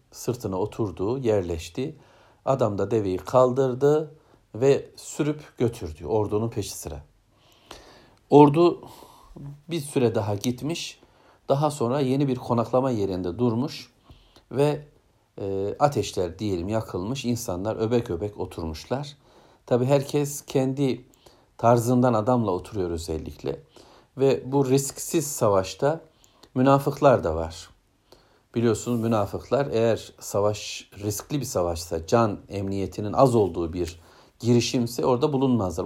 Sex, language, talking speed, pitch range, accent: male, Turkish, 105 wpm, 100-135 Hz, native